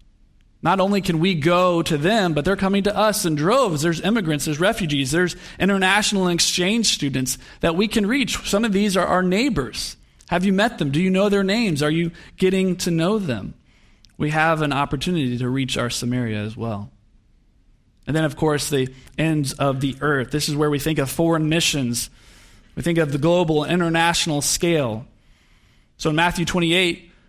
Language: English